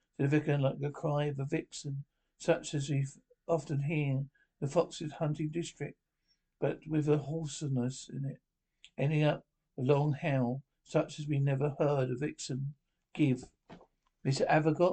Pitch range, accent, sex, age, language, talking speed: 140-160 Hz, British, male, 60-79, English, 155 wpm